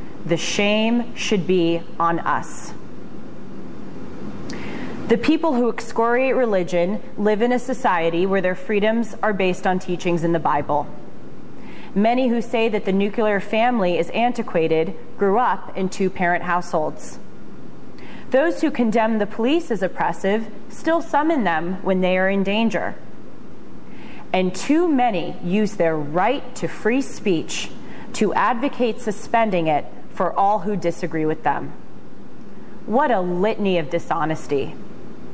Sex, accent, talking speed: female, American, 130 wpm